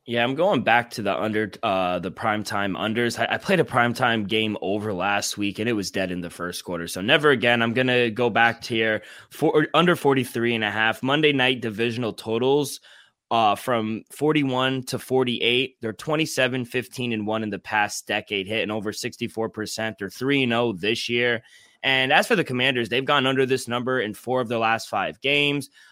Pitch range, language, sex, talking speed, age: 110-130 Hz, English, male, 210 wpm, 20-39